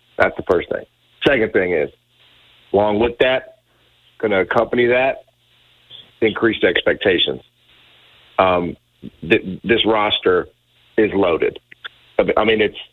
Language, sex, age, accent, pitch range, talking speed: English, male, 40-59, American, 100-120 Hz, 110 wpm